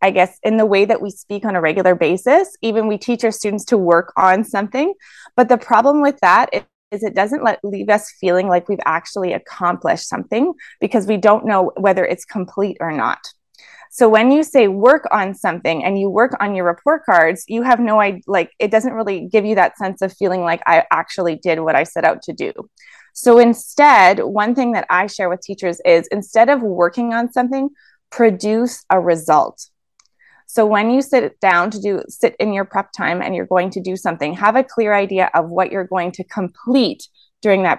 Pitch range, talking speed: 185-230 Hz, 210 wpm